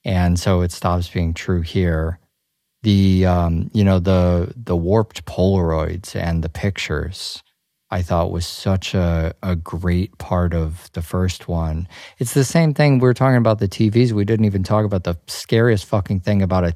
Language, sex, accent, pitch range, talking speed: English, male, American, 85-100 Hz, 185 wpm